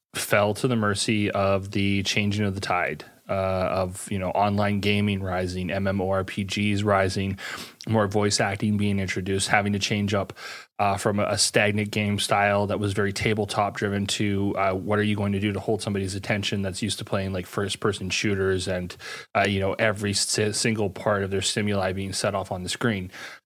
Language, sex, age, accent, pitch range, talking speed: English, male, 30-49, American, 100-110 Hz, 190 wpm